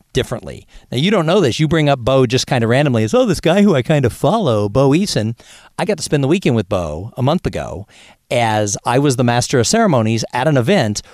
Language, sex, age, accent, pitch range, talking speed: English, male, 50-69, American, 115-150 Hz, 250 wpm